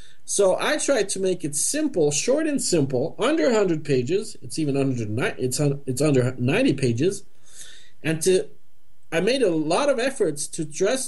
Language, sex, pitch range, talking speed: English, male, 135-190 Hz, 170 wpm